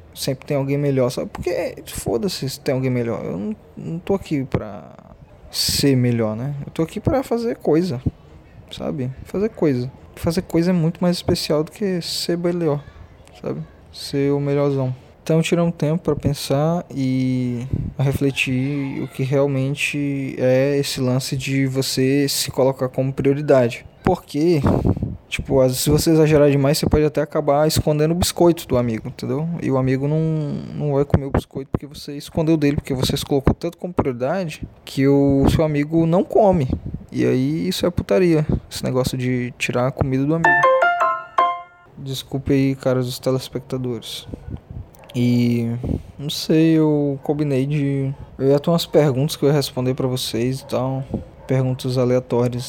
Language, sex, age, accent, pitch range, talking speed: Portuguese, male, 20-39, Brazilian, 130-160 Hz, 170 wpm